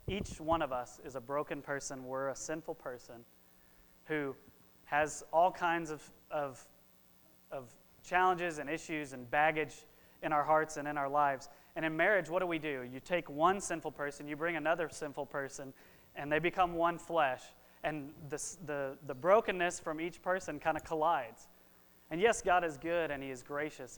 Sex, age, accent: male, 30-49, American